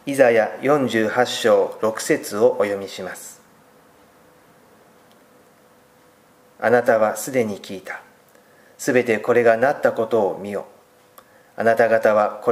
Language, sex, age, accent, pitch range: Japanese, male, 40-59, native, 110-135 Hz